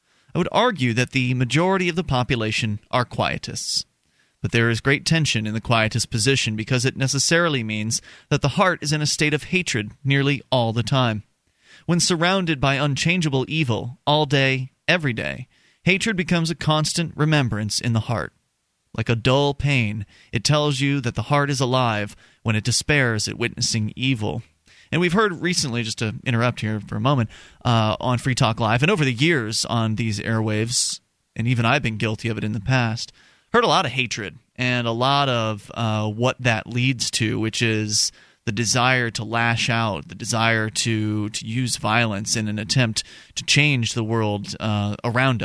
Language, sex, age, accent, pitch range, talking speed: English, male, 30-49, American, 110-135 Hz, 185 wpm